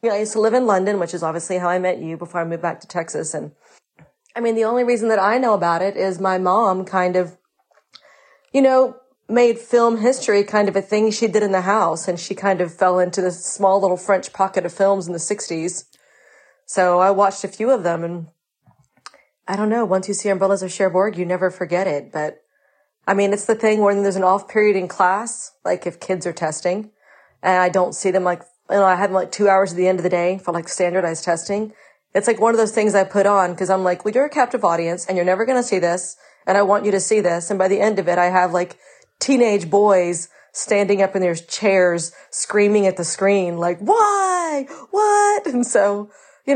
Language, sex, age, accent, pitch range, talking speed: English, female, 40-59, American, 180-215 Hz, 240 wpm